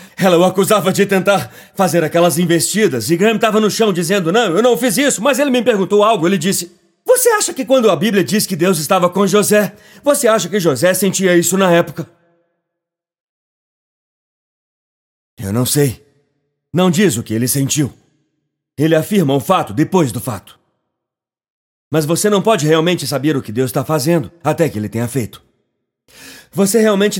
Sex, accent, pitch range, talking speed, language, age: male, Brazilian, 145-185 Hz, 175 wpm, Portuguese, 40-59